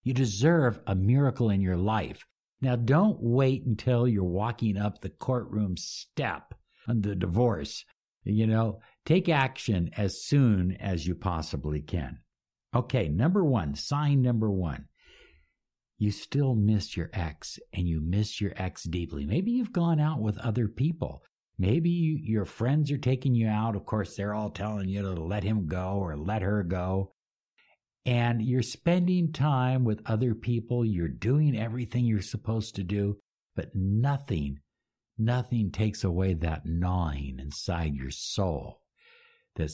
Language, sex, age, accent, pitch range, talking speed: English, male, 60-79, American, 95-140 Hz, 150 wpm